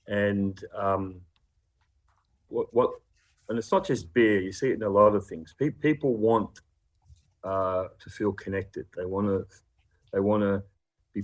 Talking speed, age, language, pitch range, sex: 160 wpm, 40-59, English, 95-110 Hz, male